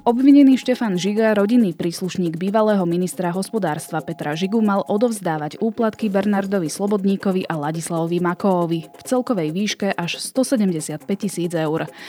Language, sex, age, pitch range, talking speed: Slovak, female, 20-39, 160-205 Hz, 125 wpm